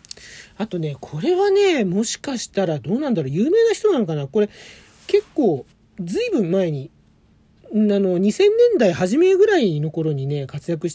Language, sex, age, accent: Japanese, male, 40-59, native